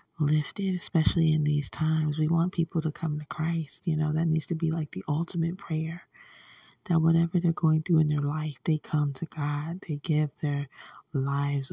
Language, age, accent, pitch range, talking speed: English, 20-39, American, 145-160 Hz, 195 wpm